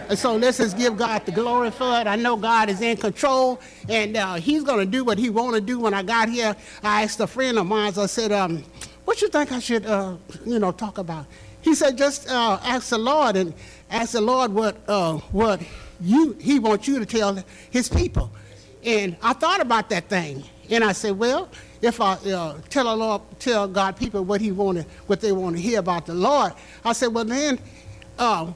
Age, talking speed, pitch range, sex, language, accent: 60-79, 220 wpm, 200-260 Hz, male, English, American